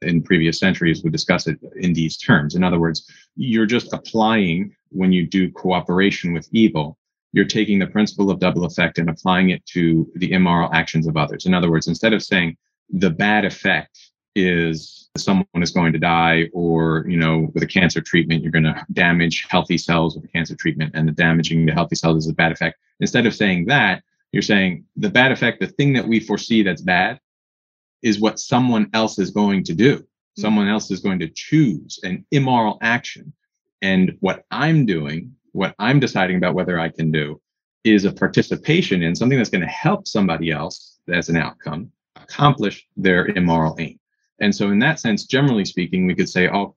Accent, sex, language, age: American, male, English, 30-49